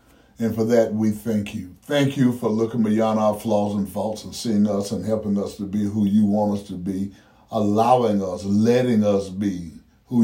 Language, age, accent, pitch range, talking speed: English, 60-79, American, 105-120 Hz, 205 wpm